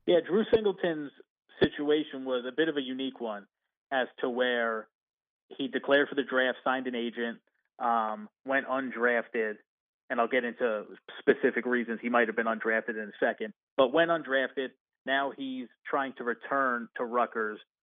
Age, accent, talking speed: 30-49, American, 165 wpm